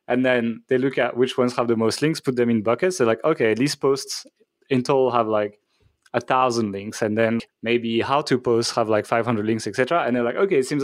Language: English